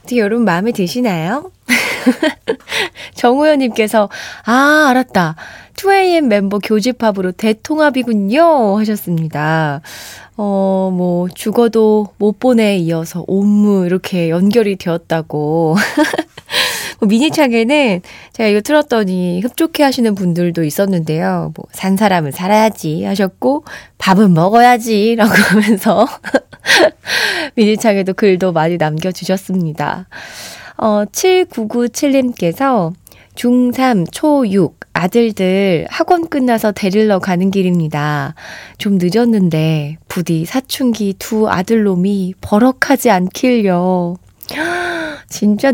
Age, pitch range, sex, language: 20-39, 185-250 Hz, female, Korean